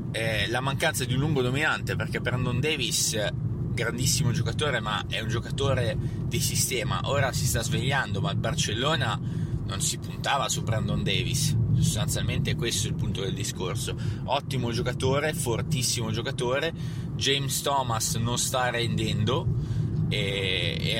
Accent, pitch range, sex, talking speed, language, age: native, 115-140 Hz, male, 140 wpm, Italian, 20-39